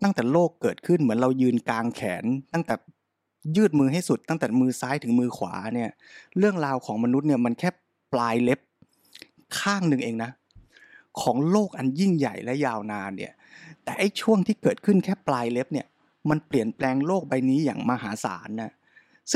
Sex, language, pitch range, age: male, Thai, 125-175 Hz, 20-39